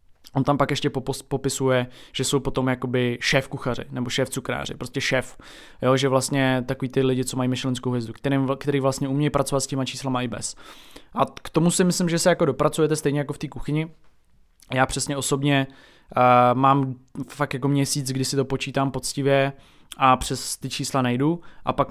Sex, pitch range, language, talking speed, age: male, 125-140 Hz, Czech, 190 wpm, 20-39